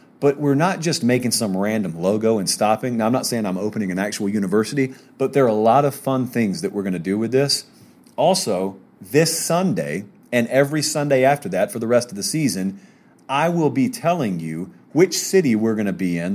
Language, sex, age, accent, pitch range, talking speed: English, male, 40-59, American, 115-155 Hz, 215 wpm